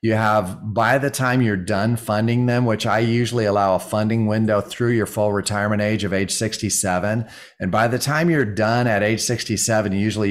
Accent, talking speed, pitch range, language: American, 200 wpm, 105-125 Hz, English